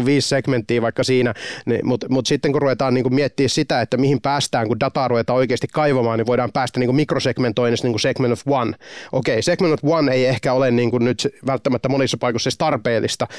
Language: Finnish